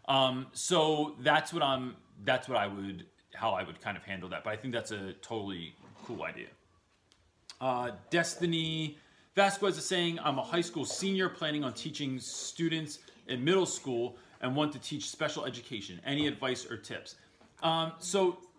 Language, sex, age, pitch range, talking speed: English, male, 30-49, 110-155 Hz, 170 wpm